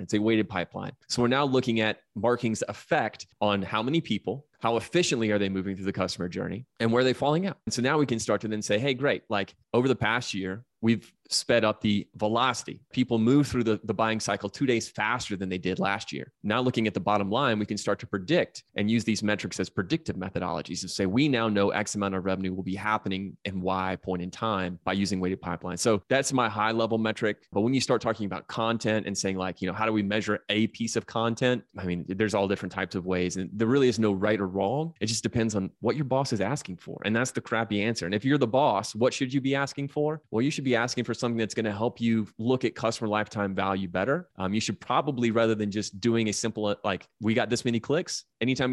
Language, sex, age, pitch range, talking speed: English, male, 30-49, 100-125 Hz, 255 wpm